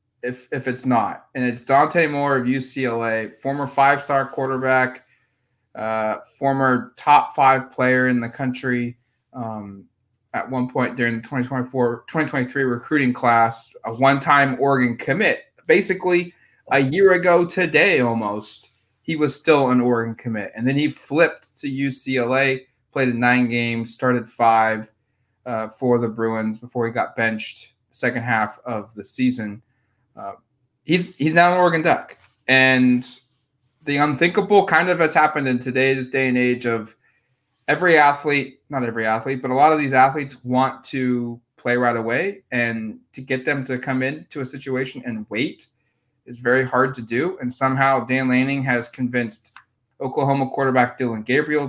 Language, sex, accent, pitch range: English, male, American, 120-135 Hz